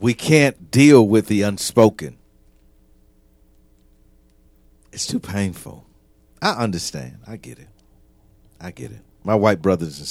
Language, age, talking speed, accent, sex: English, 50-69, 125 wpm, American, male